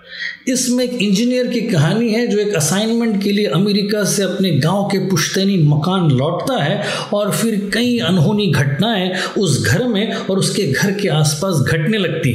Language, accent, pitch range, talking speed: Hindi, native, 160-205 Hz, 170 wpm